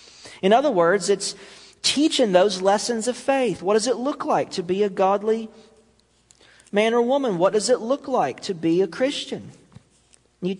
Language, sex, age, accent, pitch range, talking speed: English, male, 40-59, American, 140-225 Hz, 175 wpm